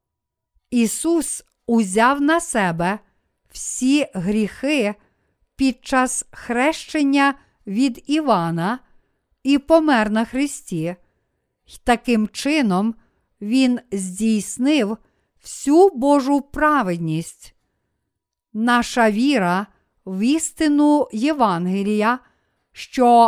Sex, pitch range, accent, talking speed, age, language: female, 210-275 Hz, native, 70 wpm, 50-69, Ukrainian